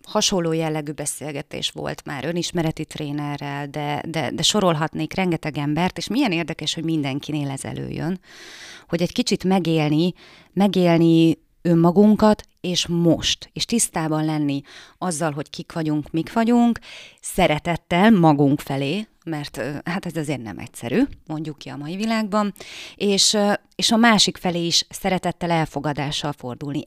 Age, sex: 30-49, female